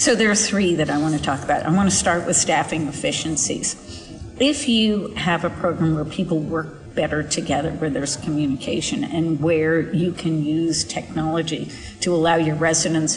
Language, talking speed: English, 180 wpm